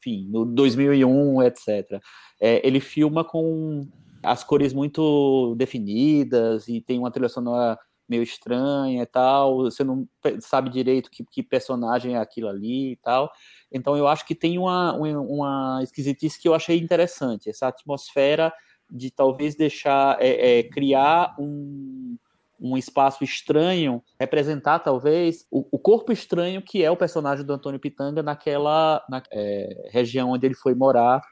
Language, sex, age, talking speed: Portuguese, male, 20-39, 150 wpm